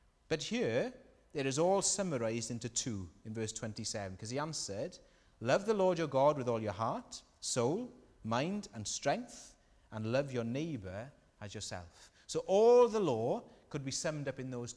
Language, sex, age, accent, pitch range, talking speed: English, male, 30-49, British, 105-155 Hz, 175 wpm